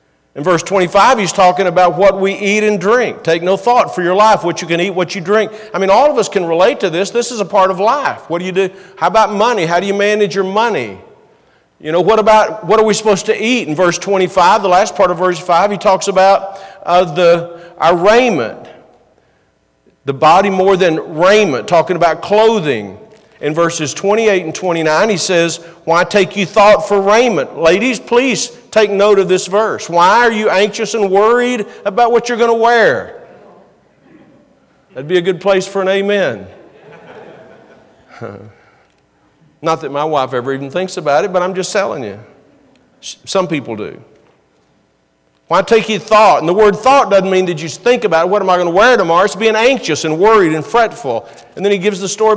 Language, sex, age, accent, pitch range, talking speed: English, male, 50-69, American, 175-215 Hz, 205 wpm